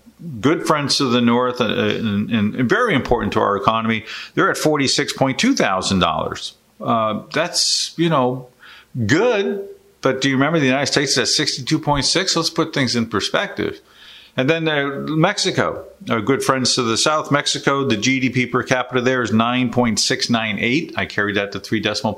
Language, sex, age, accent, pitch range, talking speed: English, male, 50-69, American, 115-145 Hz, 175 wpm